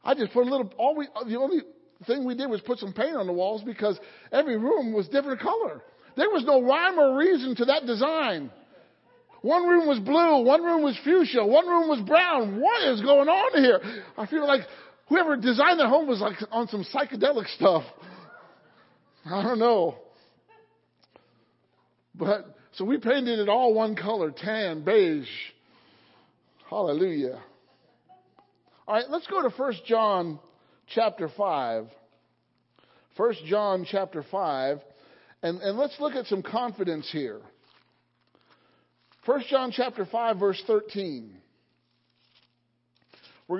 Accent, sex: American, male